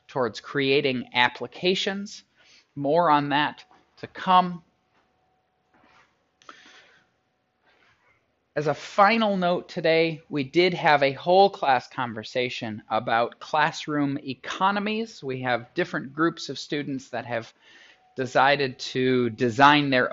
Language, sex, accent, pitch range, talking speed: English, male, American, 125-160 Hz, 105 wpm